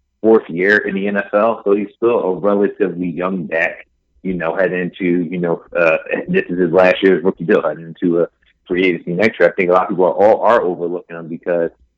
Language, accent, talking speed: English, American, 220 wpm